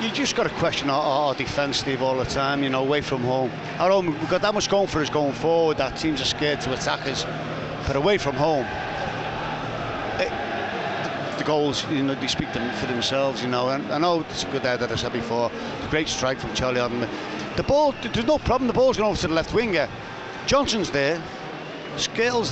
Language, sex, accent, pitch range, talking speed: English, male, British, 135-195 Hz, 225 wpm